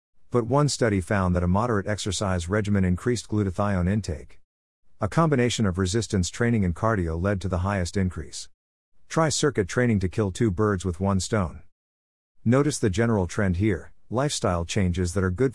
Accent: American